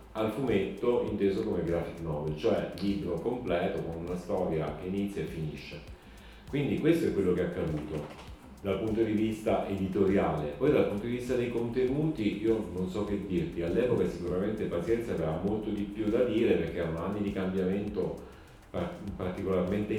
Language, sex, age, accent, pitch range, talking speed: Italian, male, 40-59, native, 90-105 Hz, 165 wpm